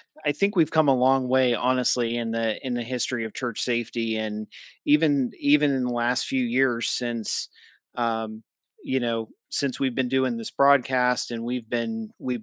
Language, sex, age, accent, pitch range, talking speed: English, male, 30-49, American, 120-135 Hz, 185 wpm